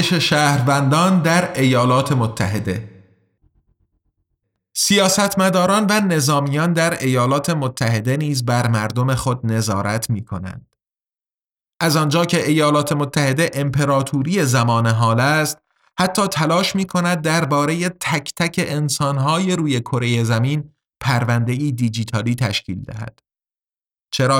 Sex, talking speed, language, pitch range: male, 105 wpm, Persian, 120-155 Hz